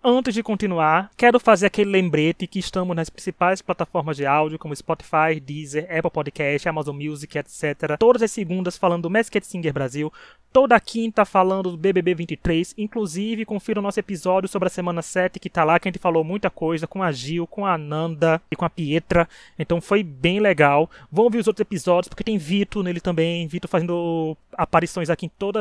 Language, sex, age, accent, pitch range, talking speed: Portuguese, male, 20-39, Brazilian, 160-195 Hz, 200 wpm